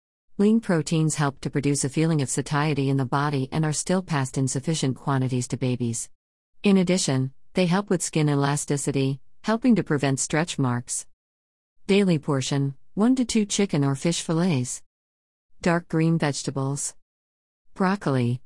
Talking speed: 150 wpm